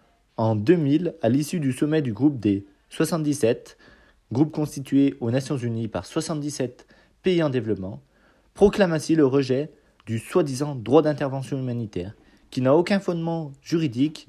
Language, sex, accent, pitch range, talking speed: French, male, French, 120-160 Hz, 145 wpm